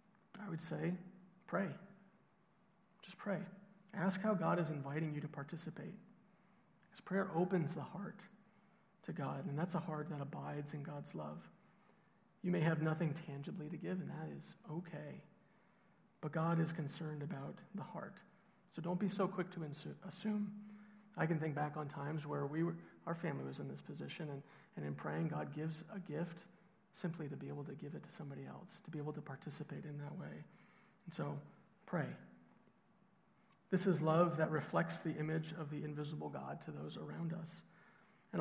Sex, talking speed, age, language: male, 180 wpm, 40-59, English